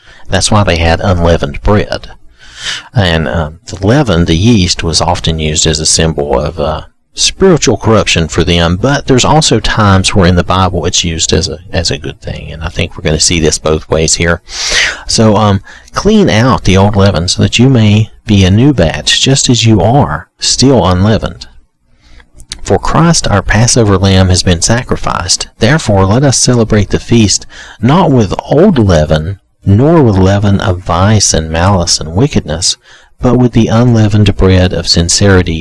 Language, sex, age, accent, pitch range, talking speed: English, male, 40-59, American, 80-105 Hz, 175 wpm